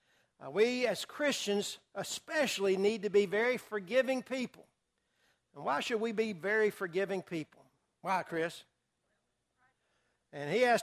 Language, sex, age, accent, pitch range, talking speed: English, male, 60-79, American, 190-245 Hz, 125 wpm